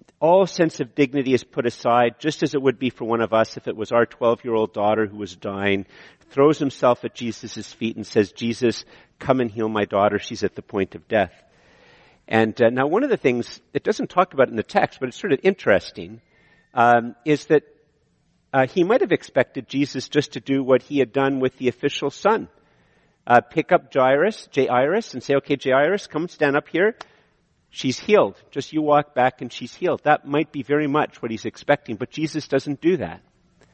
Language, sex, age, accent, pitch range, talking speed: English, male, 50-69, American, 115-150 Hz, 210 wpm